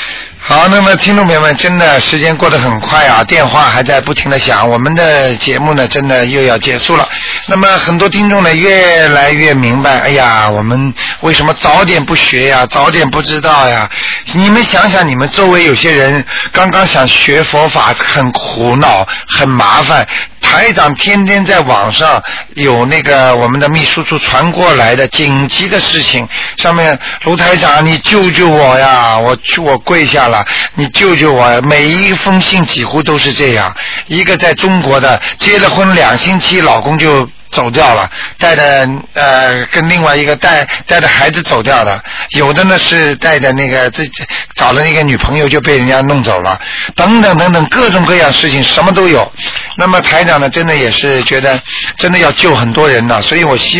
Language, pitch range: Chinese, 130-175 Hz